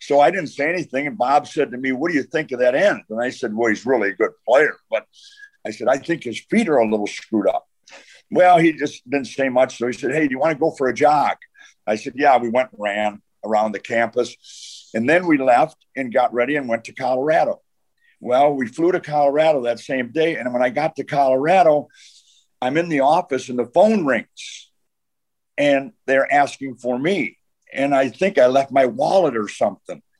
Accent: American